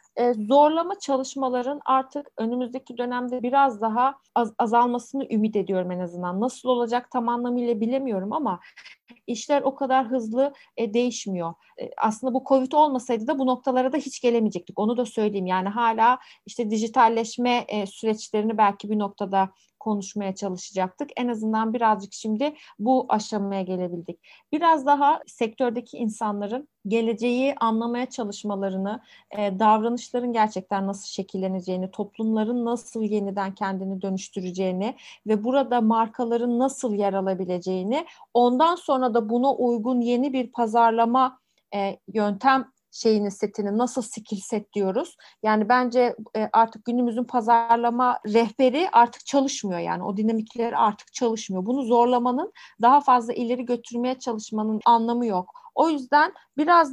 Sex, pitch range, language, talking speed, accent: female, 215-260 Hz, Turkish, 125 wpm, native